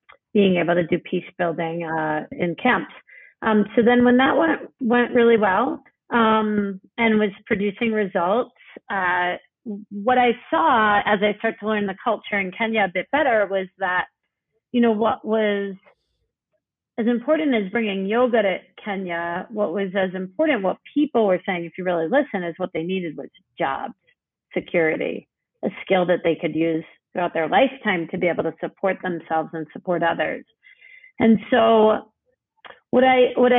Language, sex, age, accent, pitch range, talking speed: English, female, 40-59, American, 180-240 Hz, 170 wpm